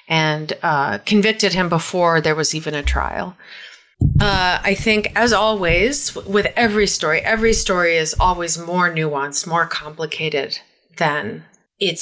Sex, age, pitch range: female, 30-49, 165-200 Hz